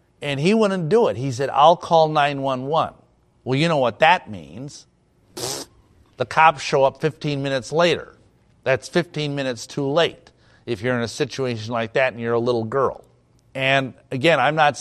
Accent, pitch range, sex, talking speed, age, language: American, 120-155 Hz, male, 180 wpm, 50-69, English